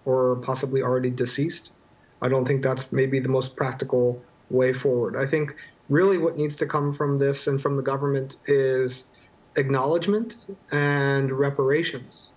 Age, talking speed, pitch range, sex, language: 30-49, 150 wpm, 130-150 Hz, male, English